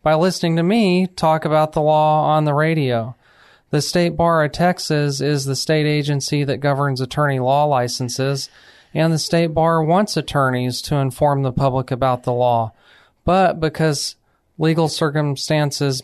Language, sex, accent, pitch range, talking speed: English, male, American, 135-155 Hz, 155 wpm